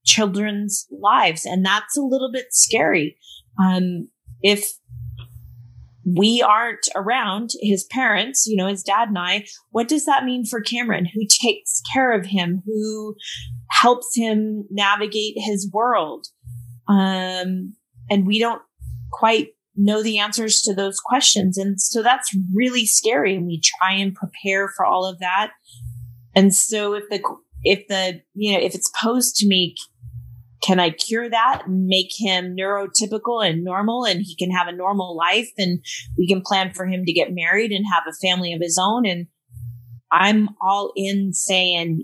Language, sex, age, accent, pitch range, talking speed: English, female, 20-39, American, 170-215 Hz, 165 wpm